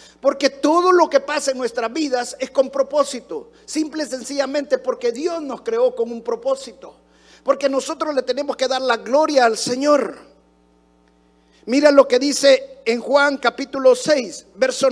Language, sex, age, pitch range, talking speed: Spanish, male, 50-69, 225-290 Hz, 160 wpm